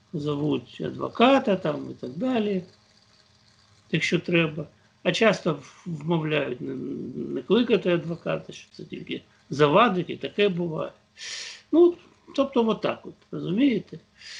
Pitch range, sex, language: 155-240 Hz, male, Ukrainian